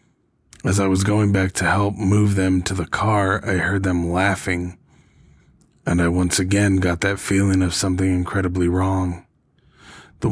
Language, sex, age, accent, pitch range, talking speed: English, male, 20-39, American, 90-100 Hz, 165 wpm